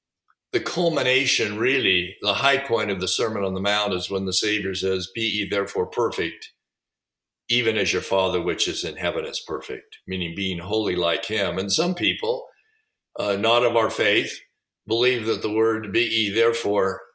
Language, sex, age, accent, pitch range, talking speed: English, male, 50-69, American, 105-145 Hz, 180 wpm